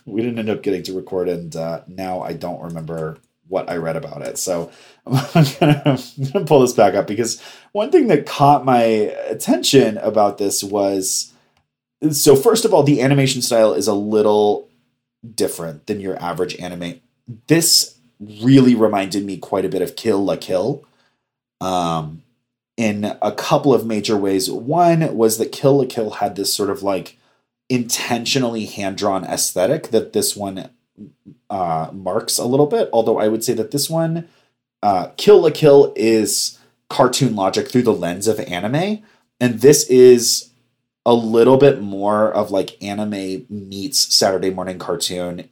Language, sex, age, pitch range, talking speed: English, male, 30-49, 95-130 Hz, 165 wpm